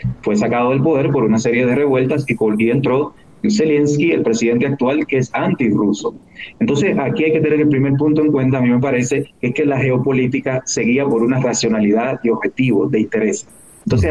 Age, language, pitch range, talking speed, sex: 30-49, Spanish, 120-150 Hz, 190 wpm, male